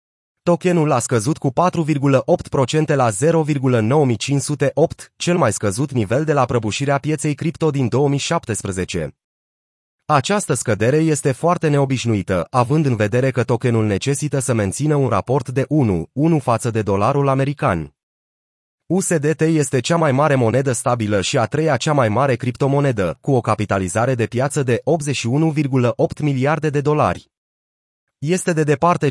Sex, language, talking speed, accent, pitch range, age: male, Romanian, 135 wpm, native, 115-150 Hz, 30-49